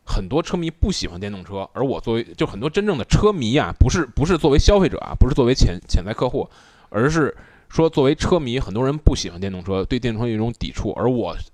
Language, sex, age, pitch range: Chinese, male, 20-39, 105-140 Hz